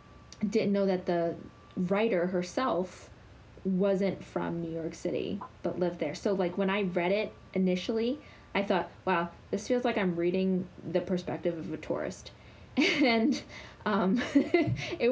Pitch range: 160-190 Hz